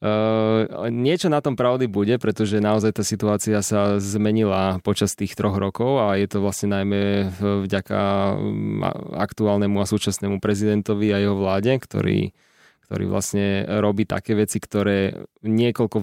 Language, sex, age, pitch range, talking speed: Slovak, male, 20-39, 100-105 Hz, 140 wpm